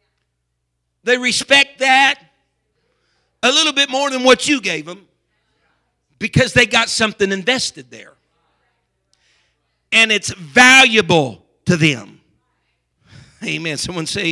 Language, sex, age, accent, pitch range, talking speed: English, male, 50-69, American, 140-205 Hz, 110 wpm